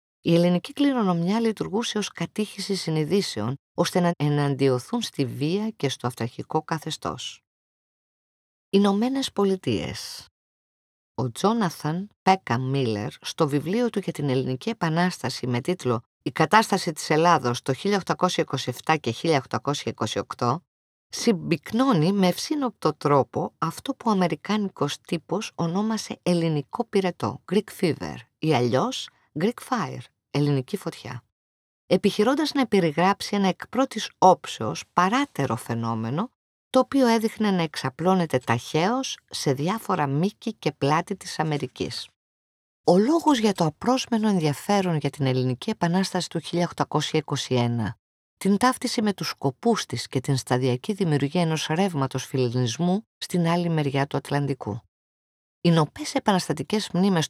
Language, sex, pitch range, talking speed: Greek, female, 130-195 Hz, 120 wpm